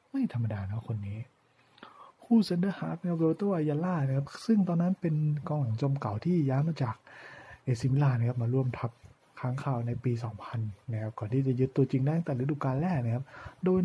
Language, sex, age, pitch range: Thai, male, 20-39, 120-155 Hz